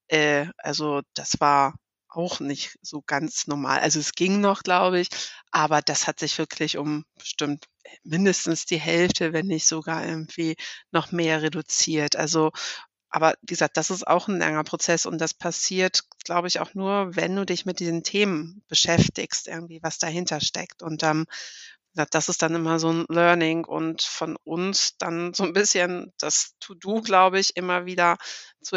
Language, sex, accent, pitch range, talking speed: German, female, German, 155-185 Hz, 170 wpm